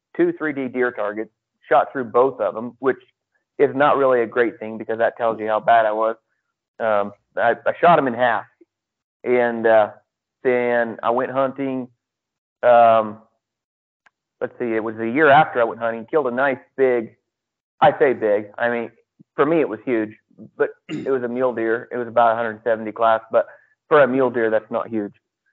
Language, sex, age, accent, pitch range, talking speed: English, male, 30-49, American, 110-125 Hz, 190 wpm